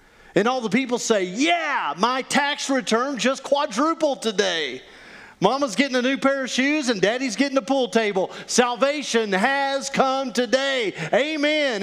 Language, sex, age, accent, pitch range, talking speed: English, male, 40-59, American, 180-260 Hz, 150 wpm